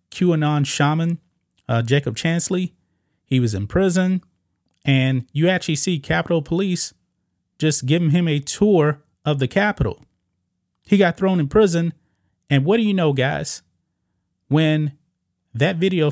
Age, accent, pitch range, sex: 30-49, American, 120-160 Hz, male